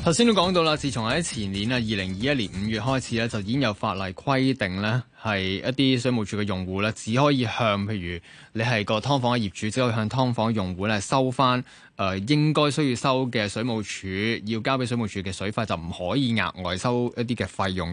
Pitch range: 100-130 Hz